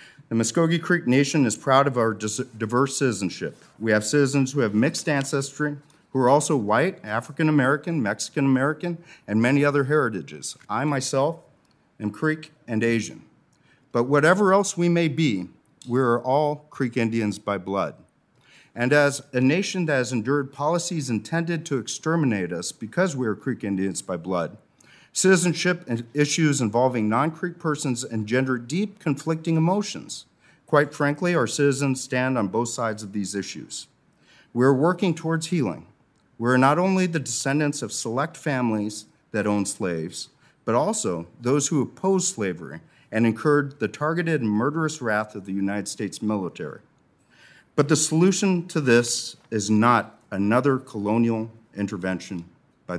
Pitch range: 110-155 Hz